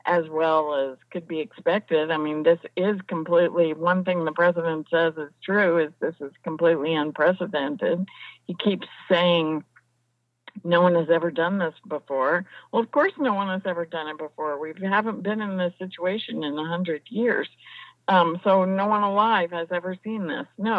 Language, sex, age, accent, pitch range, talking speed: English, female, 50-69, American, 165-205 Hz, 180 wpm